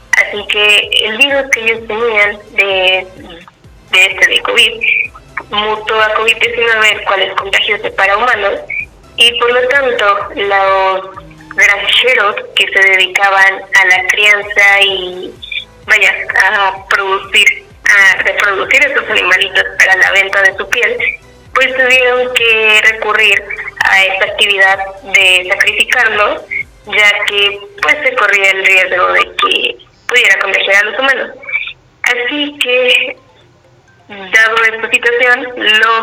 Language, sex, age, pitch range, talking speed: Spanish, female, 20-39, 195-245 Hz, 125 wpm